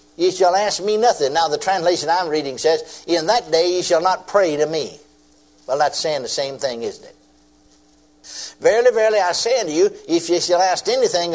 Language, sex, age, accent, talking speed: English, male, 60-79, American, 205 wpm